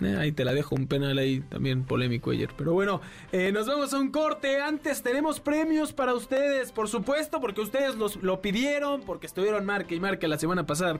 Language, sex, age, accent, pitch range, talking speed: Spanish, male, 20-39, Mexican, 185-250 Hz, 205 wpm